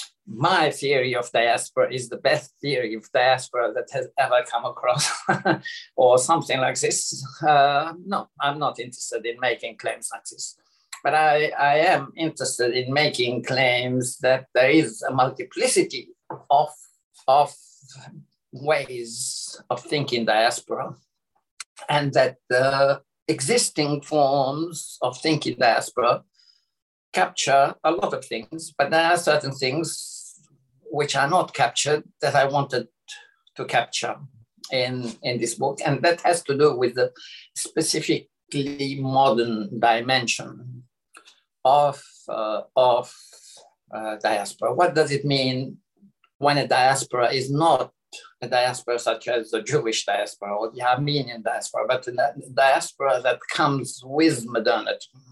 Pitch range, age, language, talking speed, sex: 125-160 Hz, 50-69, English, 130 wpm, male